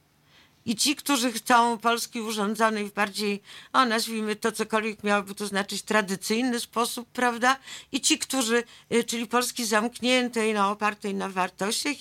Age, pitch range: 50-69, 215-255 Hz